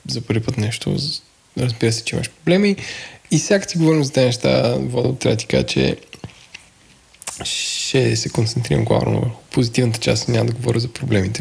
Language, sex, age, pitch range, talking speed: Bulgarian, male, 20-39, 110-135 Hz, 180 wpm